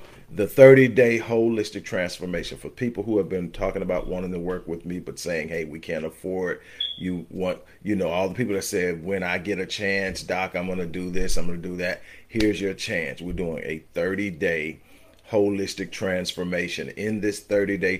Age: 40-59